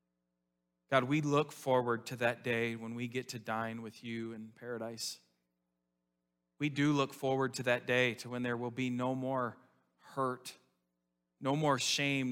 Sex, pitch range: male, 105-135 Hz